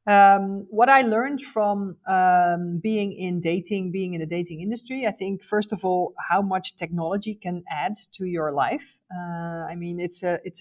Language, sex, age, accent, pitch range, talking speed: English, female, 40-59, Dutch, 165-190 Hz, 185 wpm